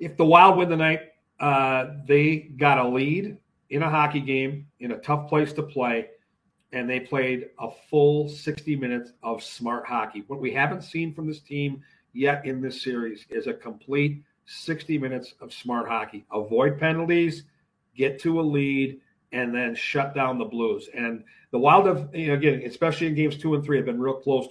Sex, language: male, English